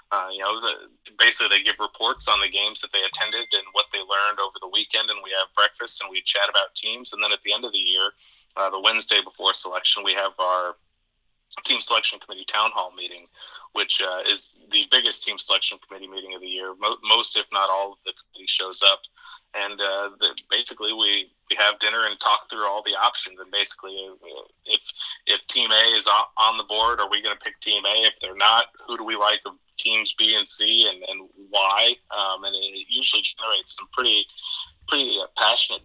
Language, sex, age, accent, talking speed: English, male, 30-49, American, 215 wpm